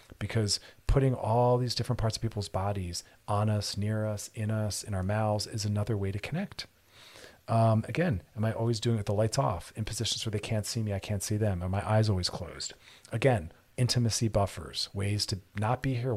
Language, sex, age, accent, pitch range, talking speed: English, male, 40-59, American, 100-125 Hz, 215 wpm